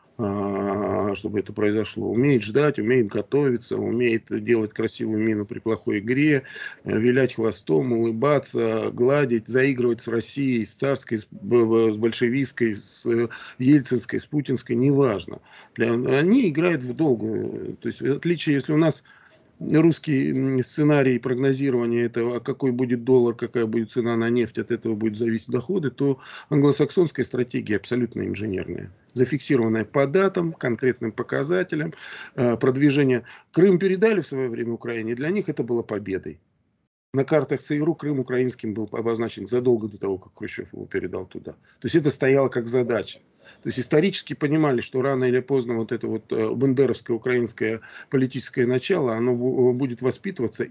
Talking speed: 145 wpm